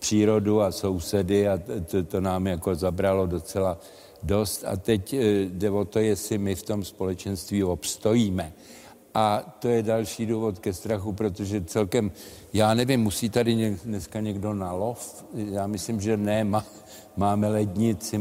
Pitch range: 100-120 Hz